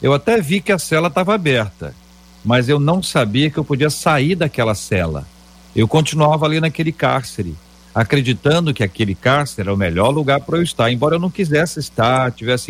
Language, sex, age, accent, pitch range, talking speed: Portuguese, male, 50-69, Brazilian, 95-125 Hz, 190 wpm